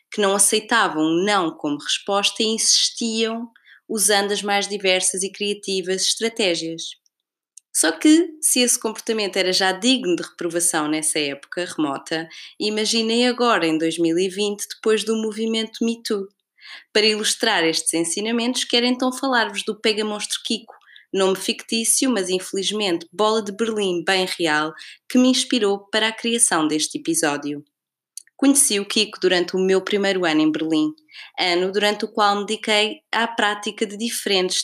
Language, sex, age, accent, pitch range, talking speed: Portuguese, female, 20-39, Brazilian, 170-225 Hz, 145 wpm